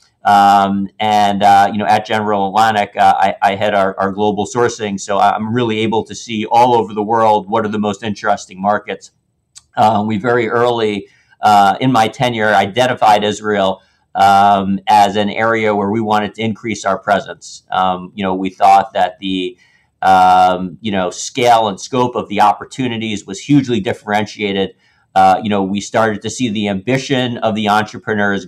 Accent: American